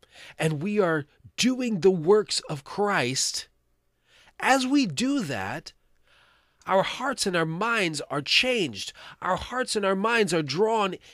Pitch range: 155-245 Hz